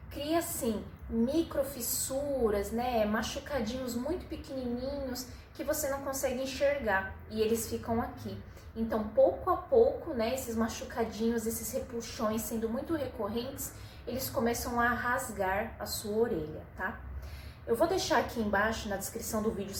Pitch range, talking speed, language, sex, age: 220-280 Hz, 135 wpm, Portuguese, female, 20-39